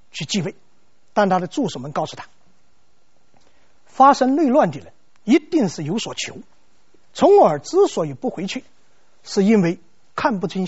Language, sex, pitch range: Chinese, male, 180-275 Hz